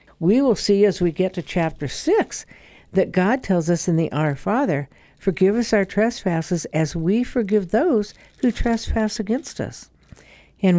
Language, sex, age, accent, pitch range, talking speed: English, female, 60-79, American, 180-250 Hz, 165 wpm